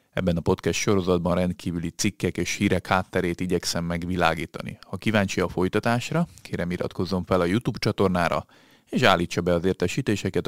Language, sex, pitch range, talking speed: Hungarian, male, 90-105 Hz, 150 wpm